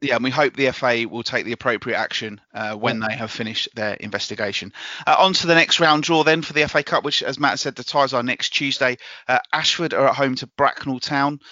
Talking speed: 240 wpm